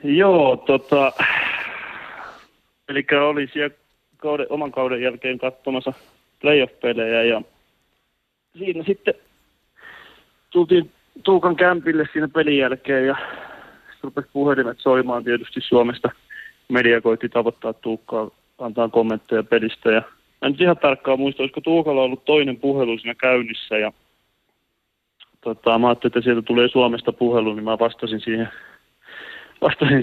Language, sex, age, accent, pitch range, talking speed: Finnish, male, 30-49, native, 115-145 Hz, 120 wpm